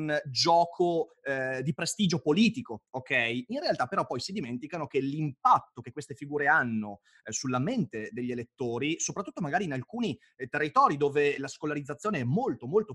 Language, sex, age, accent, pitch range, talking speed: Italian, male, 30-49, native, 125-180 Hz, 165 wpm